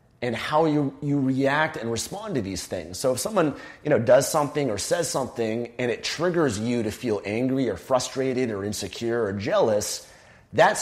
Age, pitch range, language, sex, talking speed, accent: 30-49, 110-135 Hz, English, male, 175 wpm, American